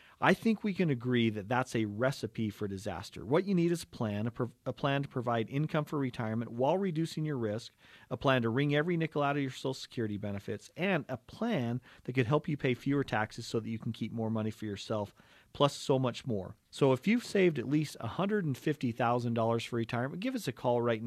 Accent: American